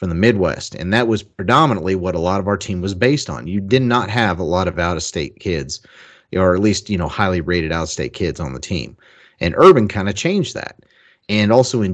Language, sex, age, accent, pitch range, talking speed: English, male, 30-49, American, 95-120 Hz, 235 wpm